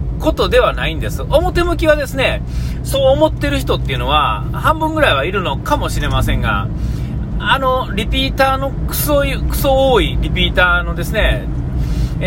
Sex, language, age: male, Japanese, 40-59